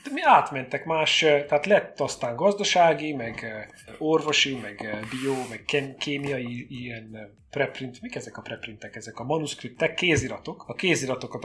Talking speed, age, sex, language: 135 wpm, 30-49, male, Hungarian